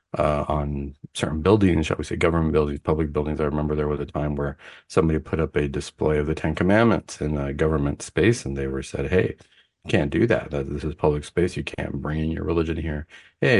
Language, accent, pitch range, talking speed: English, American, 75-95 Hz, 230 wpm